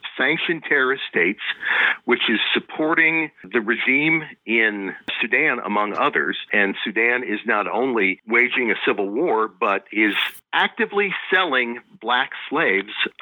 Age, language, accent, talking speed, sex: 50-69, English, American, 125 wpm, male